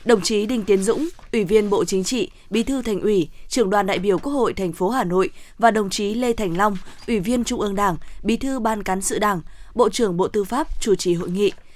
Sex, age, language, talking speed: female, 20-39, Vietnamese, 255 wpm